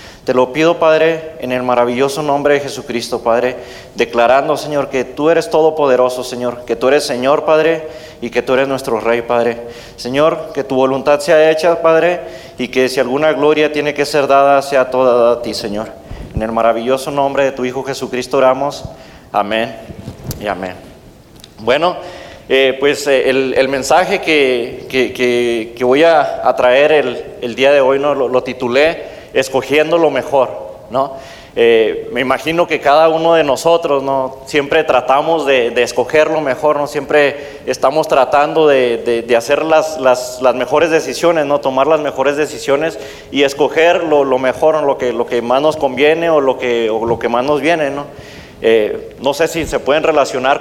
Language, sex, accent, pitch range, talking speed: Spanish, male, Mexican, 125-155 Hz, 180 wpm